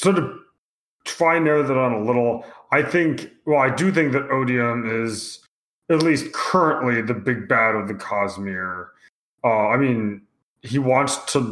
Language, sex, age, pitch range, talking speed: English, male, 20-39, 110-140 Hz, 170 wpm